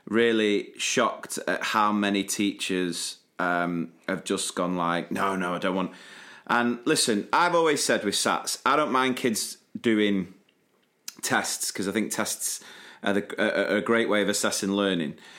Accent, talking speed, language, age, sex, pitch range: British, 160 wpm, English, 30-49, male, 95-110 Hz